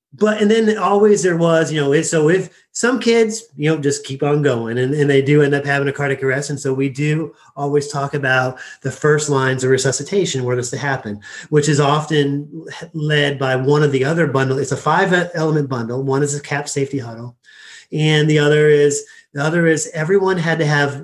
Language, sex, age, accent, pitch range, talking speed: English, male, 30-49, American, 140-160 Hz, 215 wpm